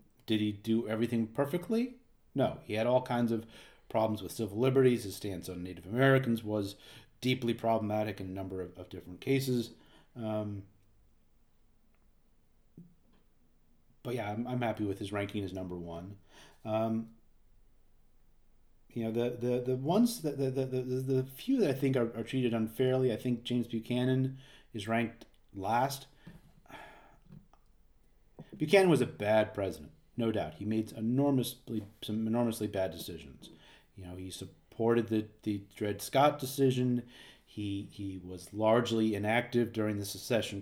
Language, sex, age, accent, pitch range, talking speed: English, male, 30-49, American, 100-120 Hz, 150 wpm